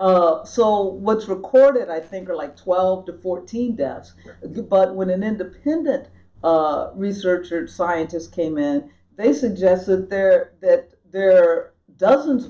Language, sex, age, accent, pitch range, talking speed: English, female, 50-69, American, 165-220 Hz, 130 wpm